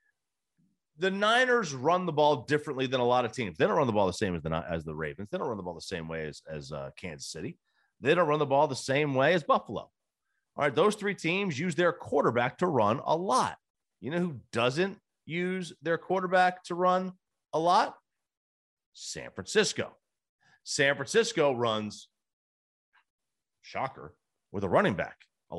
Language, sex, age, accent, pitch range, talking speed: English, male, 40-59, American, 100-155 Hz, 190 wpm